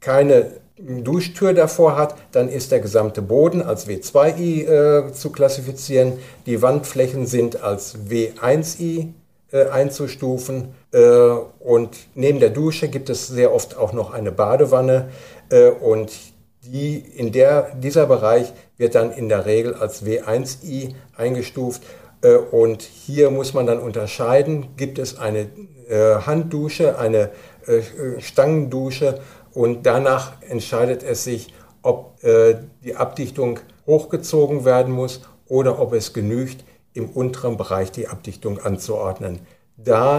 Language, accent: German, German